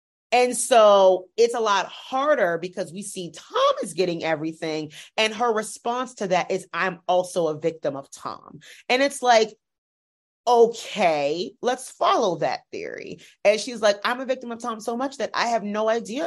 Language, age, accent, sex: English, 30-49, American, female